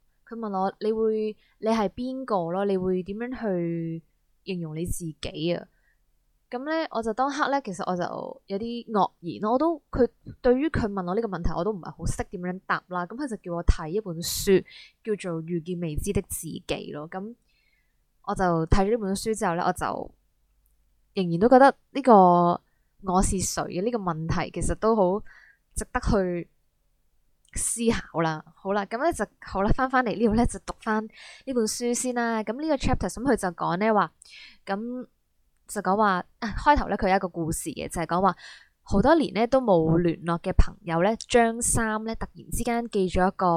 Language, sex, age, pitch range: Chinese, female, 20-39, 175-230 Hz